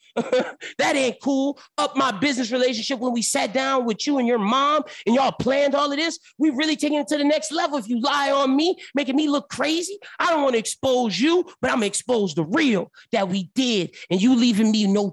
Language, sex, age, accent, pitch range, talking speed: English, male, 30-49, American, 210-270 Hz, 235 wpm